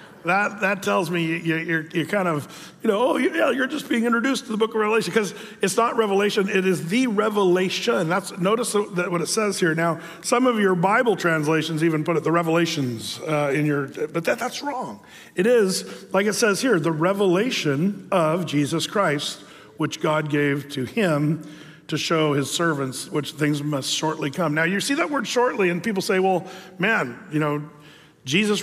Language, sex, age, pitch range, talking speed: English, male, 50-69, 160-210 Hz, 200 wpm